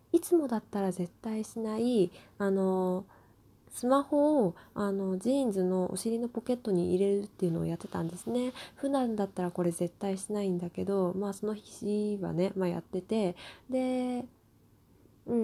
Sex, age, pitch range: female, 20-39, 170-235 Hz